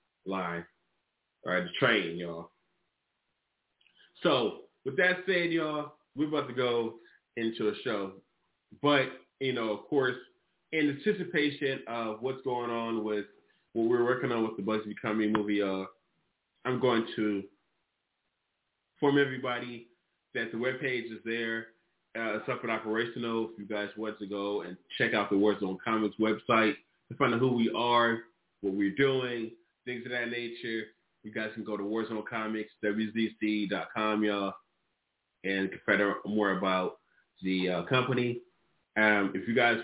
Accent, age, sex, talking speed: American, 20-39, male, 155 wpm